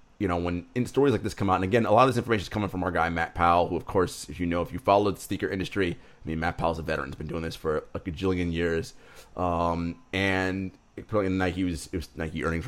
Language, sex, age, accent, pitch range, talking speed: English, male, 30-49, American, 90-120 Hz, 285 wpm